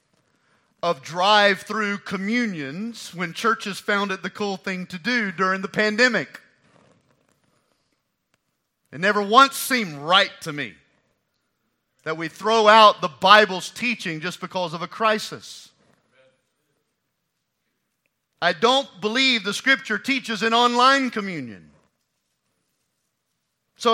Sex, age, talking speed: male, 40-59, 115 wpm